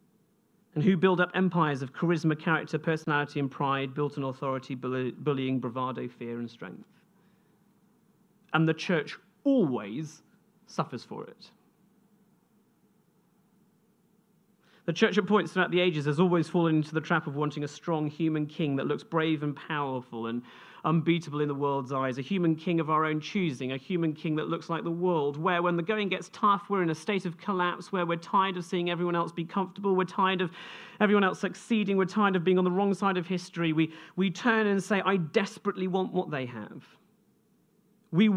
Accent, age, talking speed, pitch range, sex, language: British, 40-59, 190 wpm, 155-200 Hz, male, English